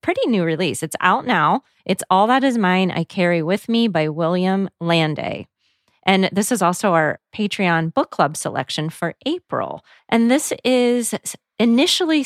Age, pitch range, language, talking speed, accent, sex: 30-49, 170-230 Hz, English, 160 wpm, American, female